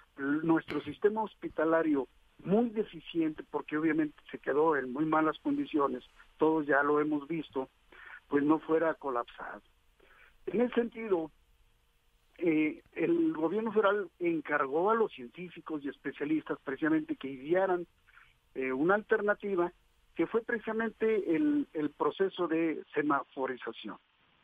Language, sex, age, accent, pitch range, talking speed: Spanish, male, 50-69, Mexican, 150-205 Hz, 120 wpm